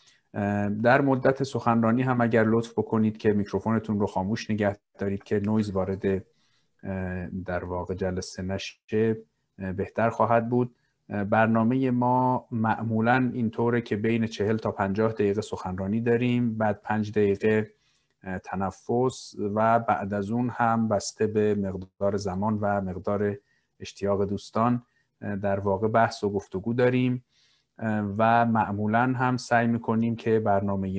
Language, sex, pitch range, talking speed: Persian, male, 100-120 Hz, 125 wpm